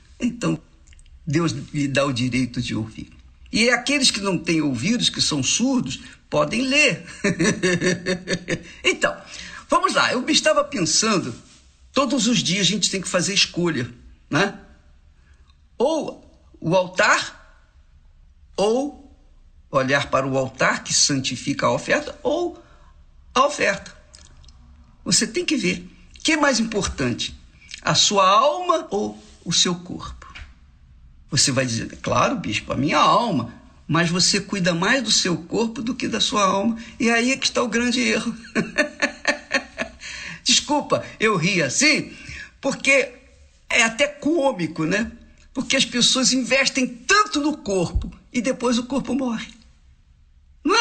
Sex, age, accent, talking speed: male, 60-79, Brazilian, 140 wpm